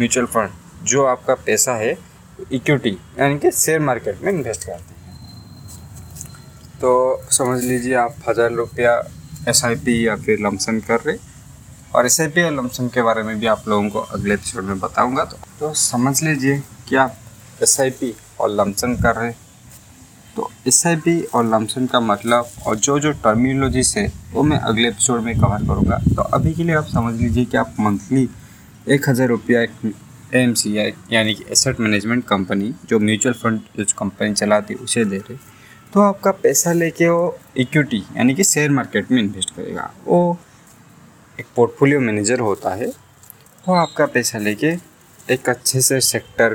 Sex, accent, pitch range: male, native, 110-140 Hz